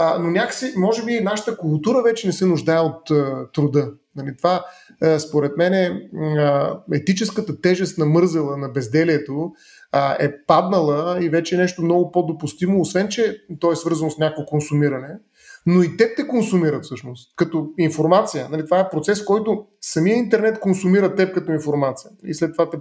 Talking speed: 165 wpm